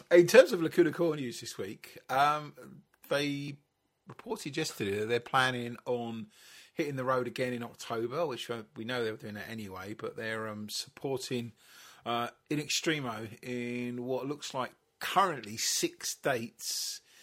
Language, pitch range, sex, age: English, 105-140 Hz, male, 30-49